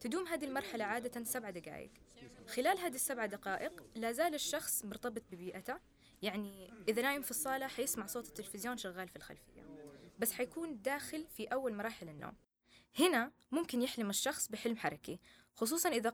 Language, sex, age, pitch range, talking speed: Arabic, female, 20-39, 210-275 Hz, 150 wpm